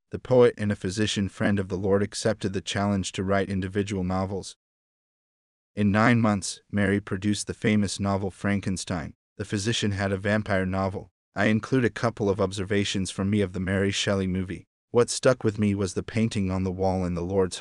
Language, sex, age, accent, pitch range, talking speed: English, male, 30-49, American, 95-105 Hz, 195 wpm